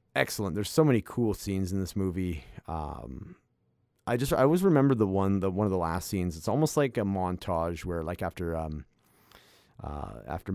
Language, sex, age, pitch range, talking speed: English, male, 30-49, 85-100 Hz, 195 wpm